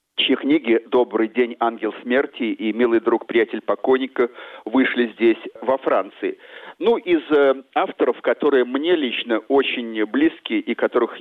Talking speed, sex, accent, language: 135 wpm, male, native, Russian